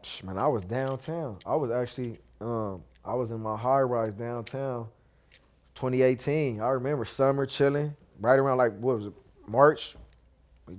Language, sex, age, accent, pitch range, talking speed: English, male, 20-39, American, 115-145 Hz, 150 wpm